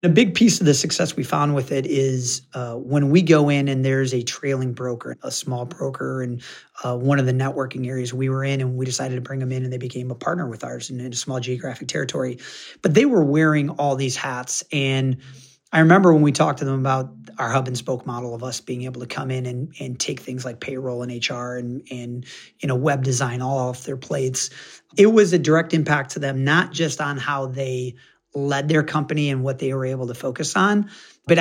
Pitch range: 130-155 Hz